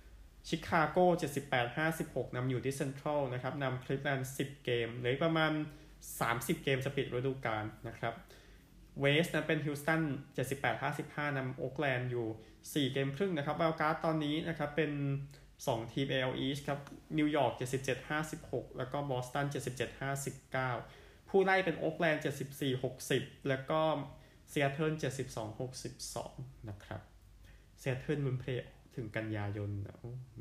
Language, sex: Thai, male